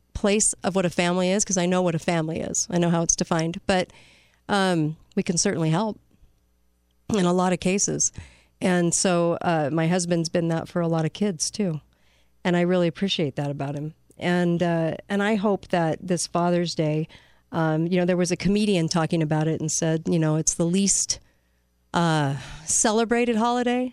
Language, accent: English, American